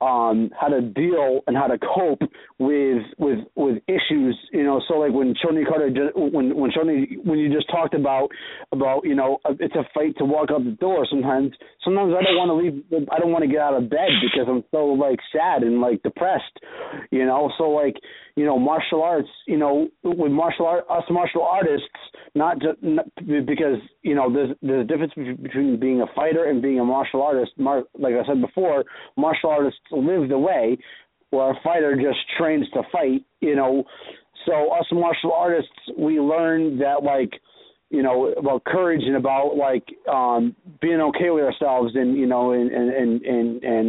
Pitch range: 125-160 Hz